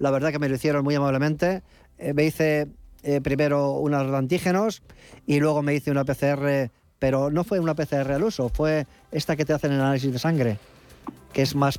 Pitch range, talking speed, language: 135-165 Hz, 200 wpm, Spanish